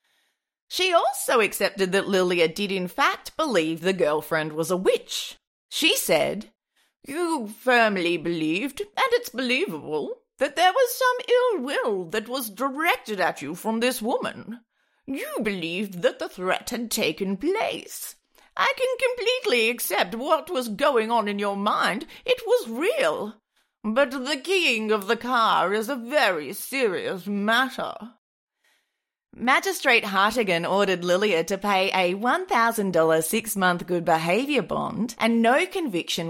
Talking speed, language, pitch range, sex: 140 wpm, English, 175-285 Hz, female